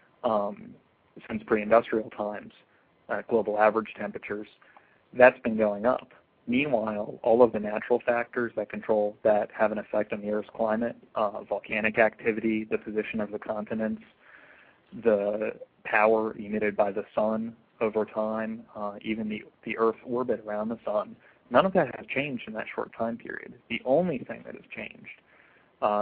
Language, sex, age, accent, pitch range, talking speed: English, male, 20-39, American, 105-115 Hz, 160 wpm